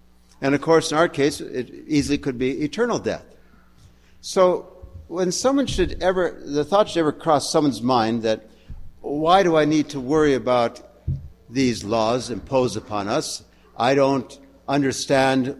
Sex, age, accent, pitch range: male, 60-79, American, 115-170 Hz